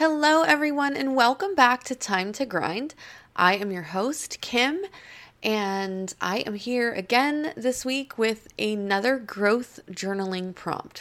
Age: 20-39